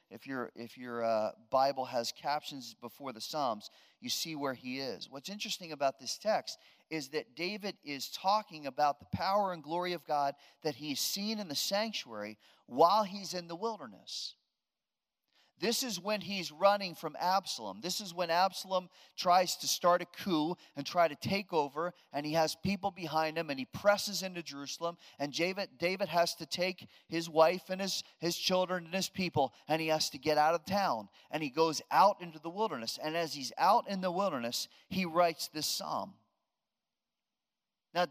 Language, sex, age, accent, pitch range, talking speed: English, male, 40-59, American, 155-200 Hz, 185 wpm